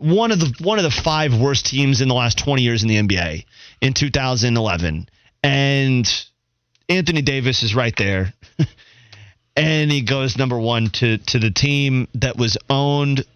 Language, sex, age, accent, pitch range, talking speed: English, male, 30-49, American, 120-150 Hz, 165 wpm